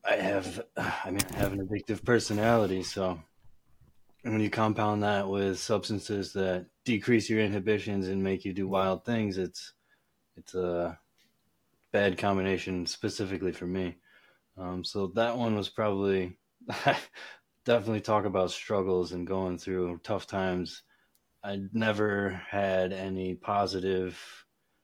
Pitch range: 95-110 Hz